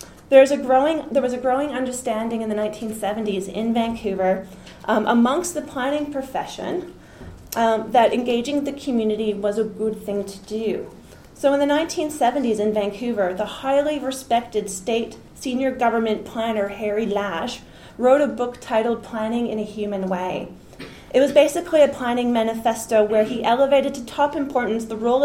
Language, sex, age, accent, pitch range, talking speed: English, female, 30-49, American, 215-265 Hz, 155 wpm